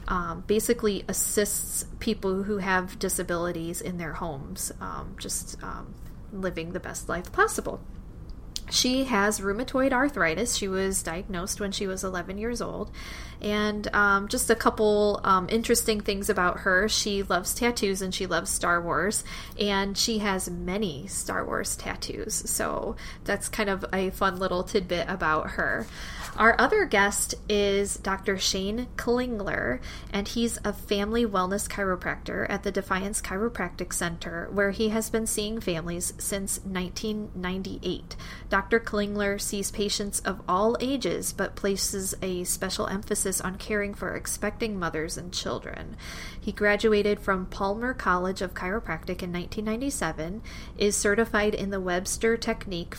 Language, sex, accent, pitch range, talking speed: English, female, American, 185-215 Hz, 145 wpm